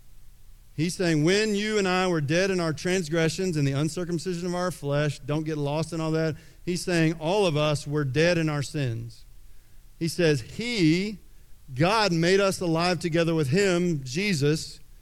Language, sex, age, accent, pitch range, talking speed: English, male, 50-69, American, 145-190 Hz, 175 wpm